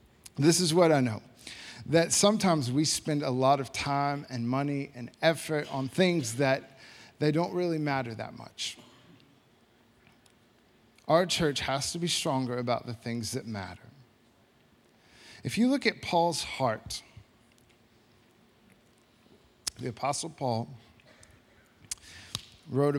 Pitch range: 115-145 Hz